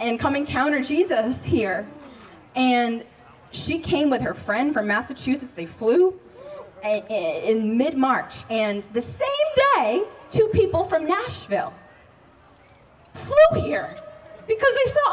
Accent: American